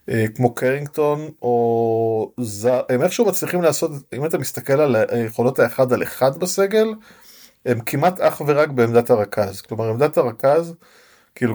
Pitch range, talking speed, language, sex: 110-140 Hz, 140 wpm, Hebrew, male